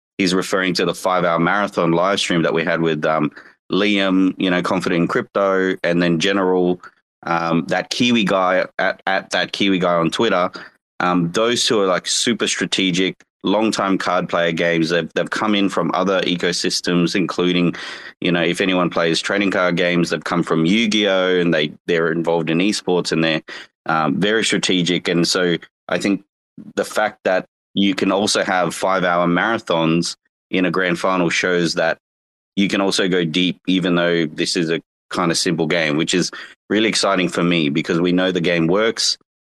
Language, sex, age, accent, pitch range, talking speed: English, male, 20-39, Australian, 85-95 Hz, 185 wpm